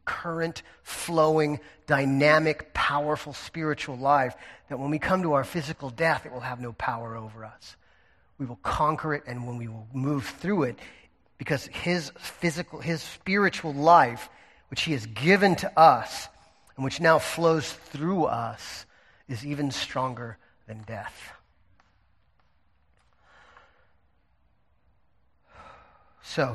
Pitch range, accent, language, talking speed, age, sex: 125-155 Hz, American, English, 125 wpm, 40-59, male